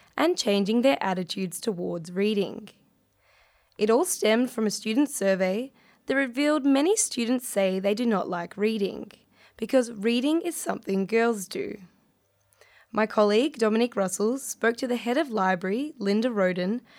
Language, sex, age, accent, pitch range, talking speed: English, female, 10-29, Australian, 195-255 Hz, 145 wpm